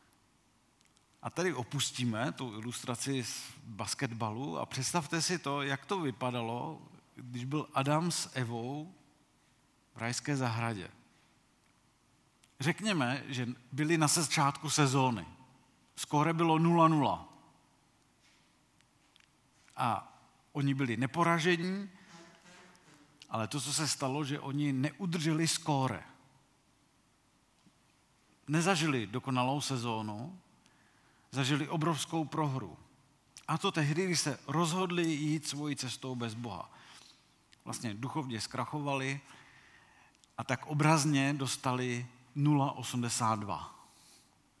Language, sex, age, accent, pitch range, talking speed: Czech, male, 50-69, native, 125-150 Hz, 95 wpm